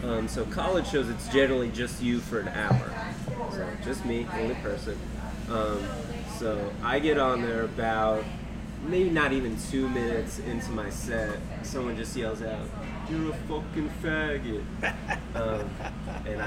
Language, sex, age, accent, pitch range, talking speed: English, male, 30-49, American, 120-155 Hz, 150 wpm